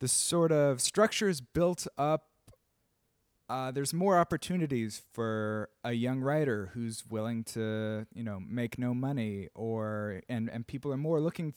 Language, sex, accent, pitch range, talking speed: English, male, American, 105-135 Hz, 150 wpm